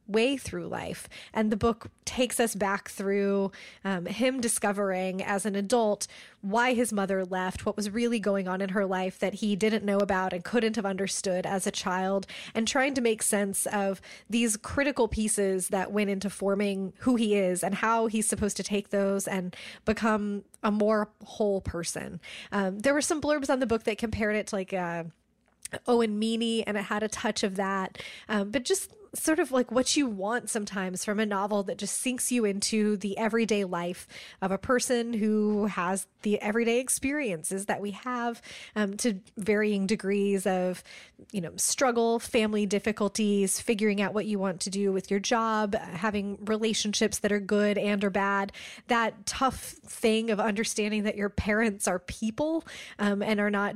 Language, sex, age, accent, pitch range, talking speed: English, female, 20-39, American, 195-225 Hz, 185 wpm